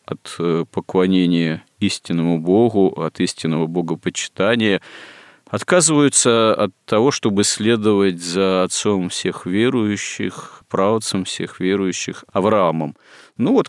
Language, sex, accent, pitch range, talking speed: Russian, male, native, 90-115 Hz, 95 wpm